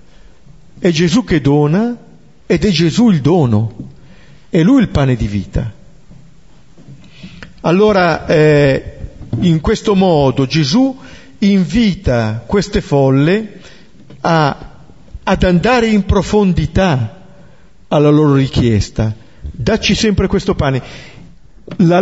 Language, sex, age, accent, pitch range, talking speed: Italian, male, 50-69, native, 140-200 Hz, 100 wpm